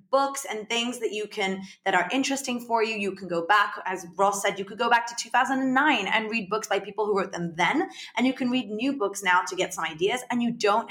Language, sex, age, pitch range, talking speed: English, female, 20-39, 185-240 Hz, 260 wpm